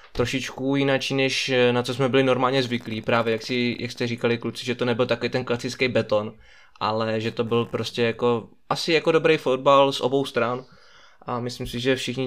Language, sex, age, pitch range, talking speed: Czech, male, 20-39, 110-130 Hz, 200 wpm